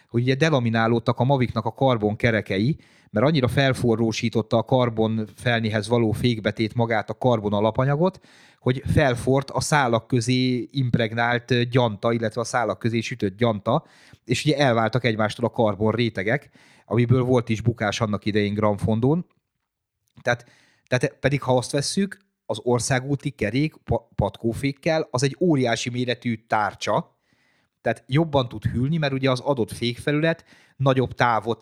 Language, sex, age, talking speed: Hungarian, male, 30-49, 140 wpm